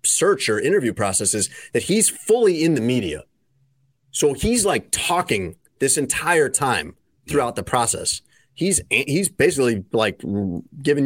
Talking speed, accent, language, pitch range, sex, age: 135 wpm, American, English, 105-135 Hz, male, 30-49